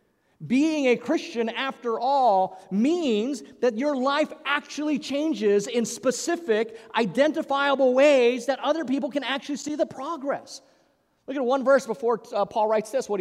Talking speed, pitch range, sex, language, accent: 150 wpm, 175-270 Hz, male, English, American